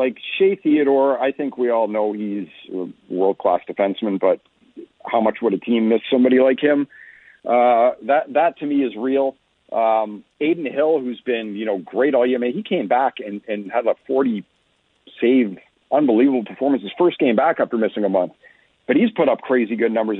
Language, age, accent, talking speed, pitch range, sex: English, 40-59, American, 200 wpm, 110-155 Hz, male